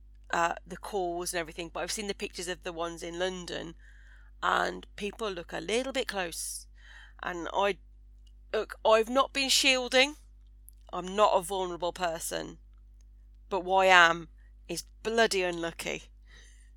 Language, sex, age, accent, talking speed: English, female, 30-49, British, 145 wpm